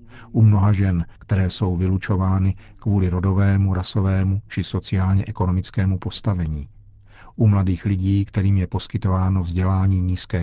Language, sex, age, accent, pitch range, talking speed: Czech, male, 50-69, native, 95-110 Hz, 115 wpm